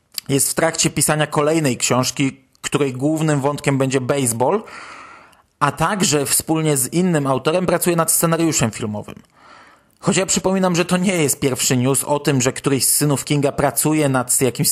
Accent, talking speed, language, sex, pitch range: native, 165 wpm, Polish, male, 135-175 Hz